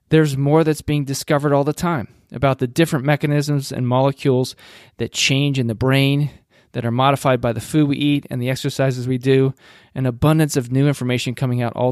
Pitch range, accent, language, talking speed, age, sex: 125-150 Hz, American, English, 200 wpm, 20-39, male